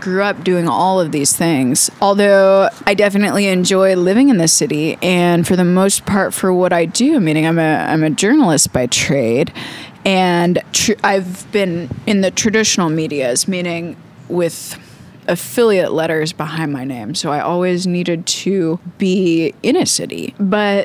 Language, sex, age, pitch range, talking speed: English, female, 20-39, 165-200 Hz, 165 wpm